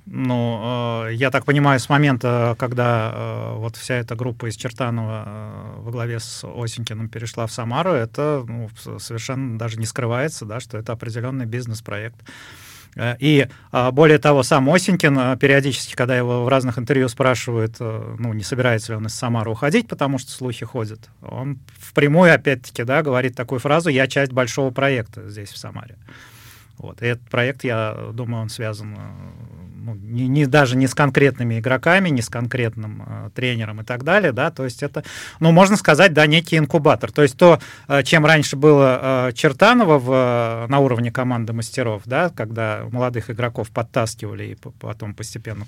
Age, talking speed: 30-49, 150 wpm